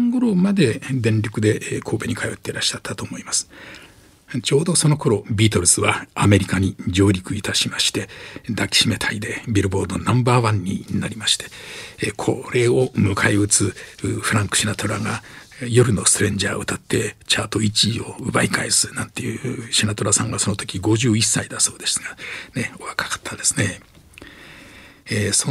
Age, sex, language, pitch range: 60-79, male, Japanese, 105-140 Hz